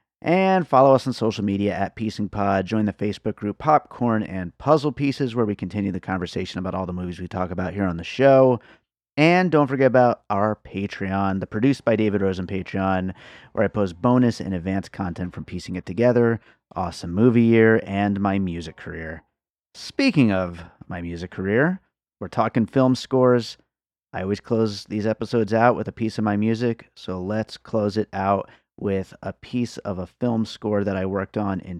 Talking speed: 190 wpm